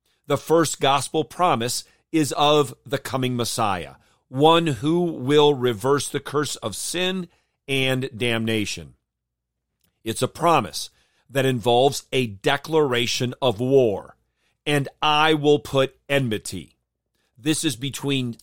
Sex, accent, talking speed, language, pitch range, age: male, American, 115 wpm, English, 125-155 Hz, 40-59